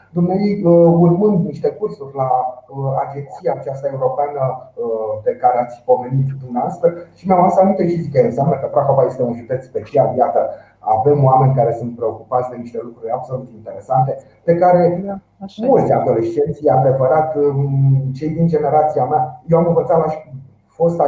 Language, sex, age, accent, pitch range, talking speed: Romanian, male, 30-49, native, 125-165 Hz, 150 wpm